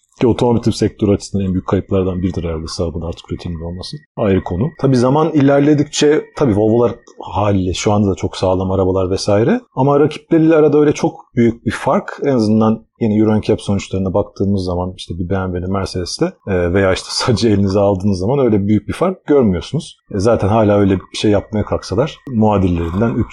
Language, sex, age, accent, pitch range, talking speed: Turkish, male, 40-59, native, 95-130 Hz, 170 wpm